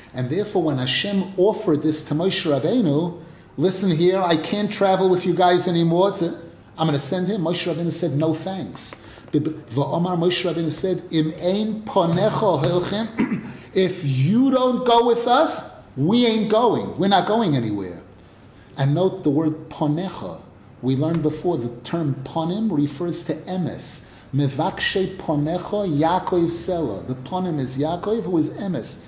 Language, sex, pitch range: English, male, 145-190 Hz